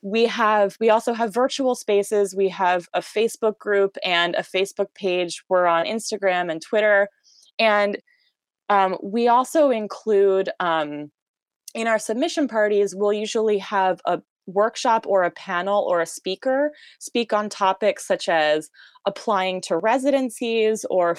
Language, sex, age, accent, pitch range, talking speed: English, female, 20-39, American, 180-225 Hz, 145 wpm